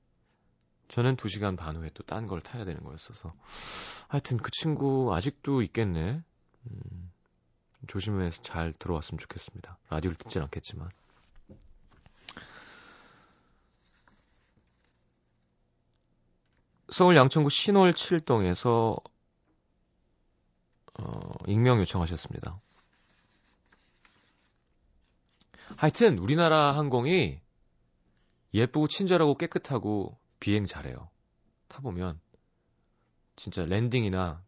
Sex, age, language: male, 30-49, Korean